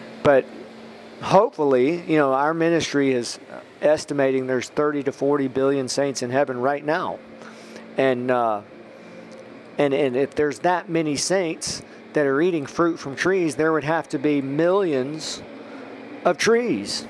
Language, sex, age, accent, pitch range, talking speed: English, male, 50-69, American, 130-170 Hz, 145 wpm